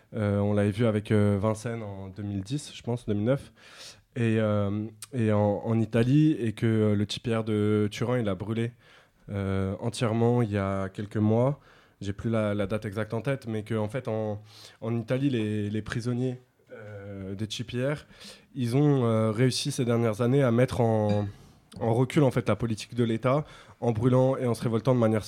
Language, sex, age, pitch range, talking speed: French, male, 20-39, 105-125 Hz, 195 wpm